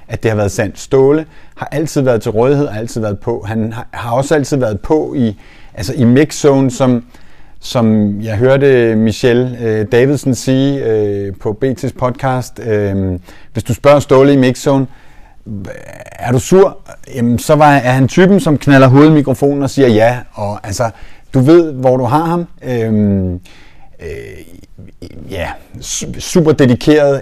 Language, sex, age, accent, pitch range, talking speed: Danish, male, 30-49, native, 105-140 Hz, 160 wpm